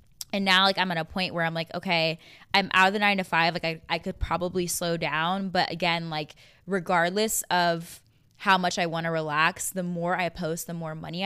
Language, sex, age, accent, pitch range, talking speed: English, female, 10-29, American, 155-175 Hz, 230 wpm